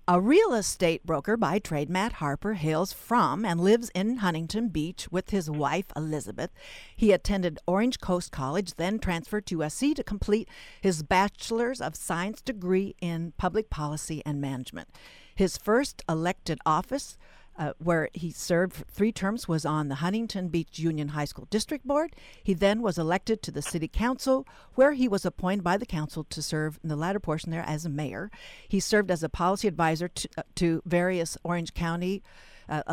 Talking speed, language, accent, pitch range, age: 180 wpm, English, American, 160-220 Hz, 50-69